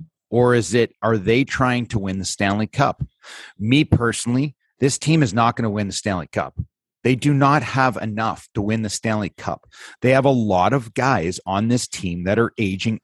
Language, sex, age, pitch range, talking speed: English, male, 30-49, 115-140 Hz, 205 wpm